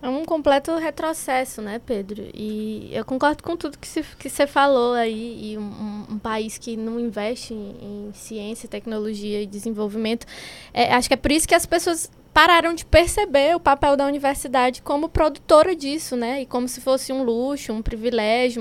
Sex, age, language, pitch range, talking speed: female, 20-39, Portuguese, 225-305 Hz, 185 wpm